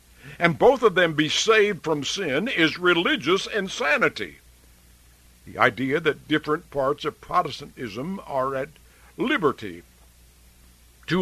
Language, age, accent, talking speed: English, 60-79, American, 120 wpm